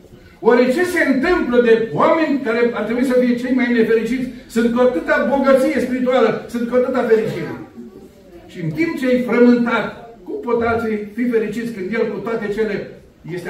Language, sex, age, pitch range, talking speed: Romanian, male, 60-79, 170-245 Hz, 180 wpm